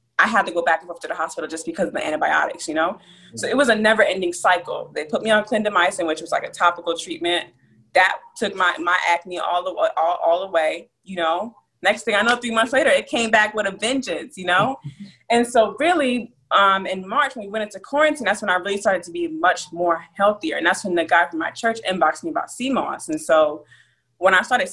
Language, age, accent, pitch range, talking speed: English, 20-39, American, 175-240 Hz, 245 wpm